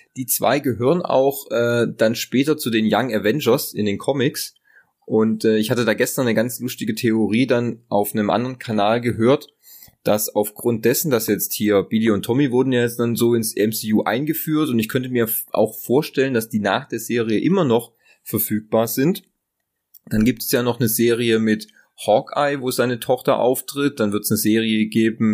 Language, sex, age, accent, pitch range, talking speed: German, male, 30-49, German, 105-130 Hz, 190 wpm